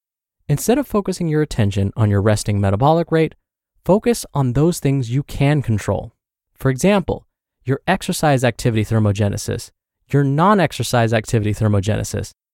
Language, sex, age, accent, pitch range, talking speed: English, male, 20-39, American, 110-160 Hz, 130 wpm